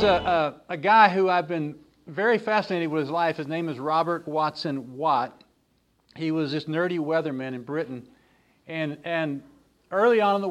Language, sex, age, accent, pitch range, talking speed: English, male, 50-69, American, 150-175 Hz, 185 wpm